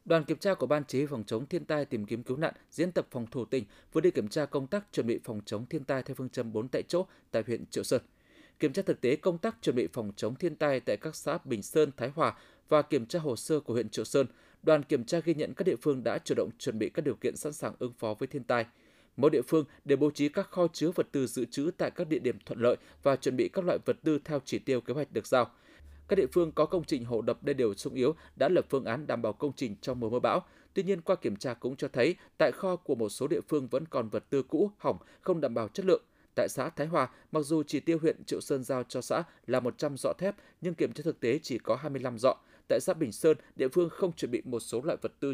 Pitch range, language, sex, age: 125-160 Hz, Vietnamese, male, 20-39